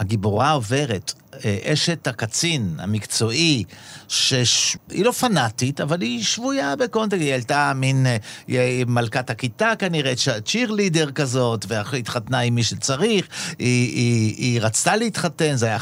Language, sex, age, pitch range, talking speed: Hebrew, male, 50-69, 115-170 Hz, 120 wpm